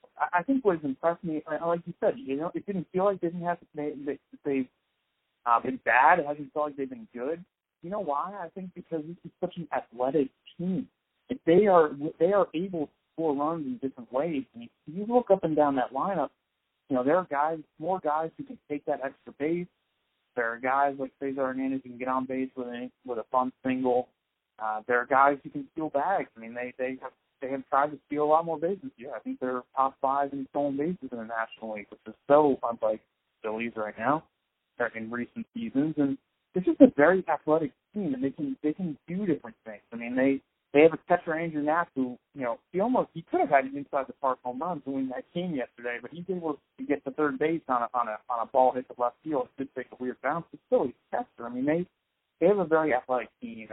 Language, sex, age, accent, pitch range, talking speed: English, male, 40-59, American, 130-165 Hz, 250 wpm